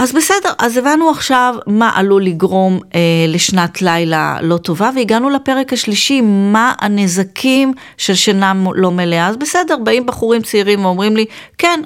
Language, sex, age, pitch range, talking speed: Hebrew, female, 40-59, 160-215 Hz, 150 wpm